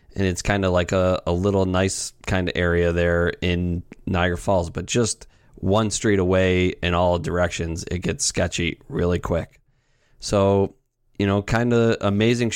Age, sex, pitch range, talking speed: 30-49, male, 90-110 Hz, 165 wpm